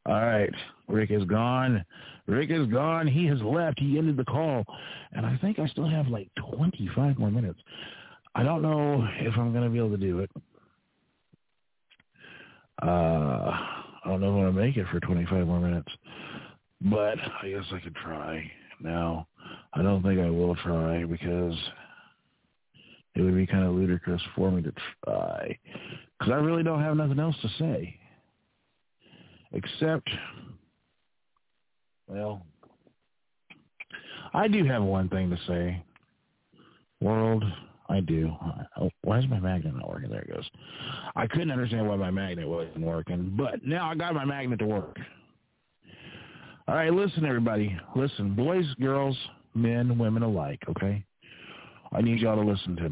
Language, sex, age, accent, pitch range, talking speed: English, male, 50-69, American, 90-135 Hz, 155 wpm